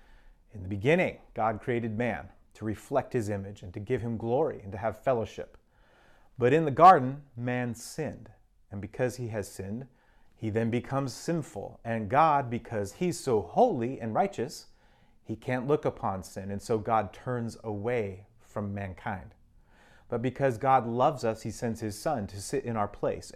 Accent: American